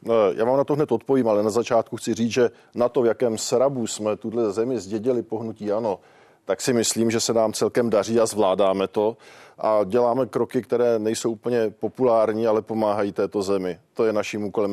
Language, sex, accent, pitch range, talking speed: Czech, male, native, 115-150 Hz, 200 wpm